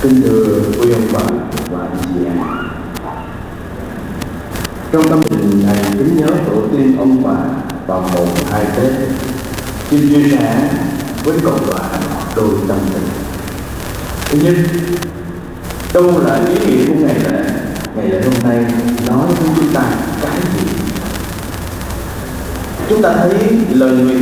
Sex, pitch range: male, 105-175 Hz